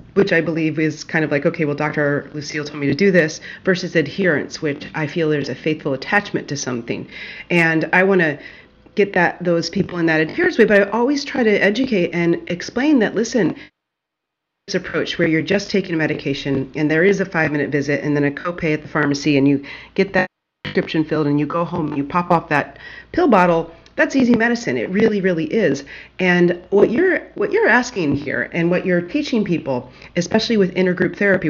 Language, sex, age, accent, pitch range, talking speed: English, female, 40-59, American, 155-195 Hz, 210 wpm